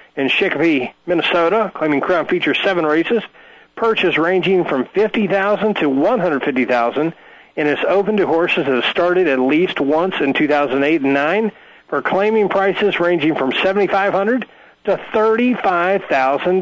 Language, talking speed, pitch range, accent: English, 170 wpm, 135-200 Hz, American